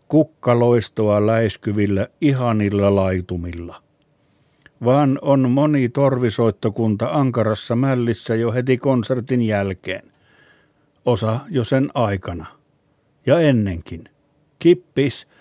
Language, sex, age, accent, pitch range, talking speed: Finnish, male, 60-79, native, 105-130 Hz, 80 wpm